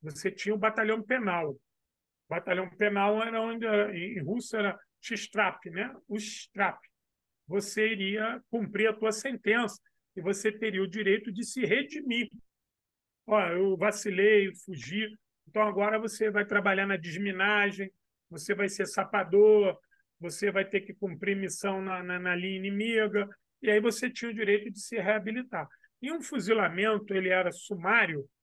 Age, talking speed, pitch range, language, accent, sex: 40-59, 150 wpm, 190-225 Hz, Portuguese, Brazilian, male